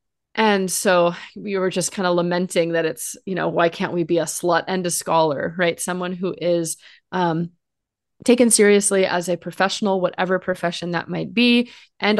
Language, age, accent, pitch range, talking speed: English, 20-39, American, 165-200 Hz, 180 wpm